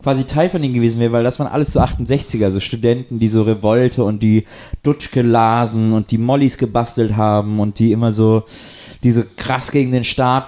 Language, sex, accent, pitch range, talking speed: German, male, German, 115-135 Hz, 205 wpm